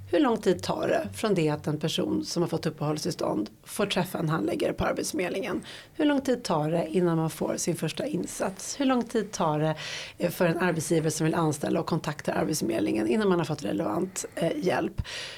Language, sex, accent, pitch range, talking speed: Swedish, female, native, 155-200 Hz, 200 wpm